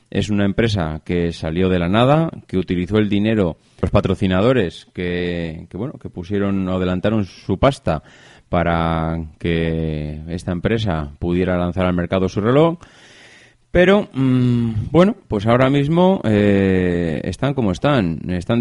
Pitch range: 90-115 Hz